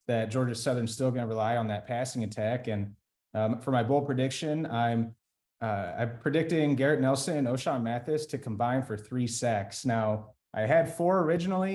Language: English